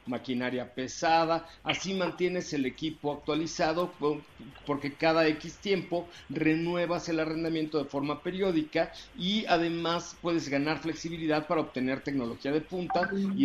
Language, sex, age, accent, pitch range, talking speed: Spanish, male, 50-69, Mexican, 140-170 Hz, 125 wpm